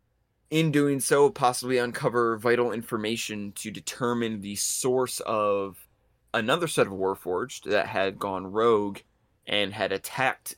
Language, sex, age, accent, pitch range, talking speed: English, male, 20-39, American, 100-125 Hz, 130 wpm